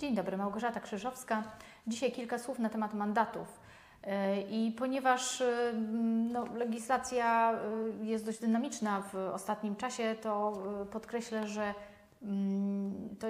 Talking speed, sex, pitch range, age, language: 105 wpm, female, 195-225 Hz, 30-49, Polish